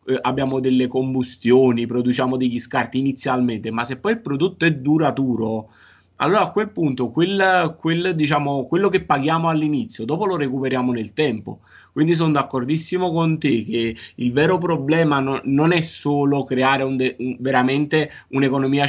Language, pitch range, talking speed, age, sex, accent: Italian, 125-155 Hz, 155 wpm, 30-49, male, native